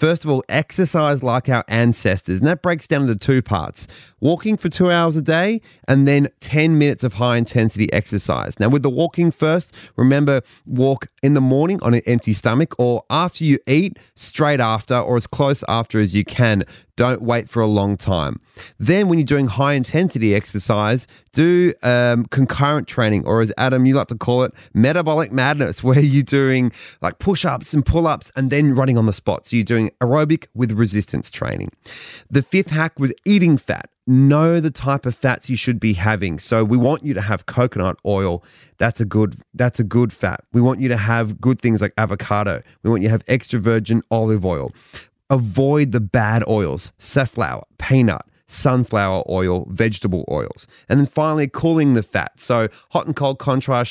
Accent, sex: Australian, male